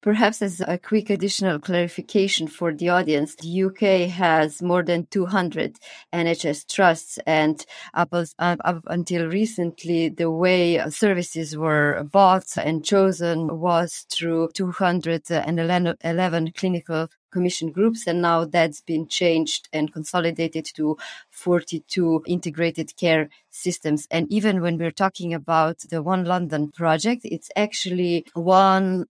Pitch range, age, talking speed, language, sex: 165-195 Hz, 30-49, 120 wpm, English, female